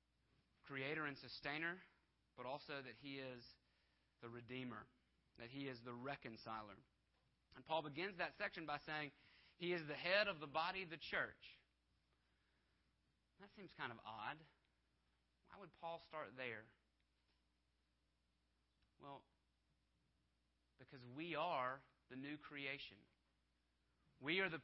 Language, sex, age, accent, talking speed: English, male, 30-49, American, 125 wpm